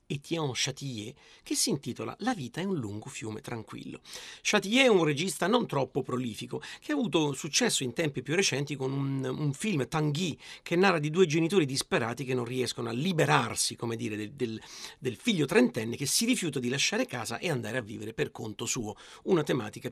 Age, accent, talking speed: 40-59, native, 195 wpm